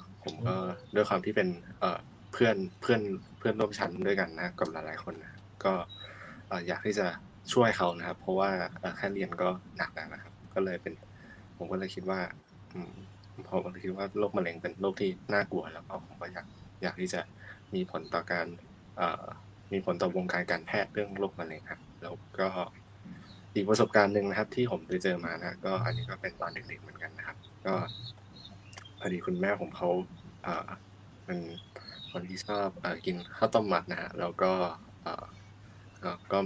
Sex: male